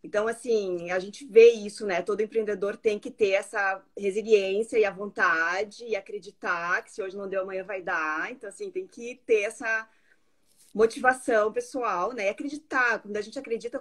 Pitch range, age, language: 205-275 Hz, 20-39, Portuguese